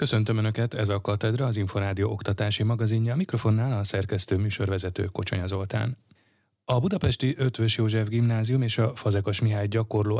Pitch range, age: 100-115 Hz, 30-49